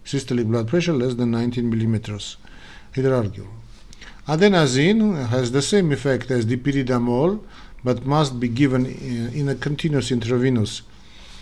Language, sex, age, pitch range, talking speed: English, male, 50-69, 120-145 Hz, 125 wpm